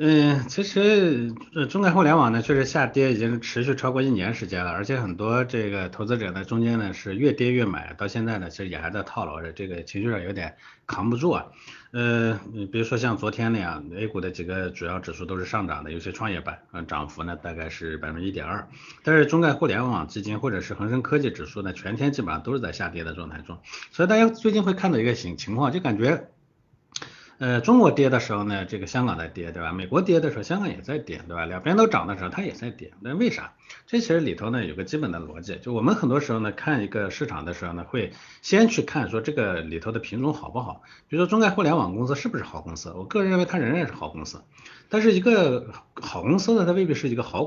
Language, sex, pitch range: Chinese, male, 95-145 Hz